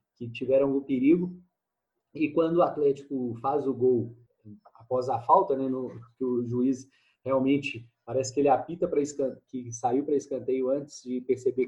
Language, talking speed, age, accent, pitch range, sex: Portuguese, 170 wpm, 20-39, Brazilian, 120-160 Hz, male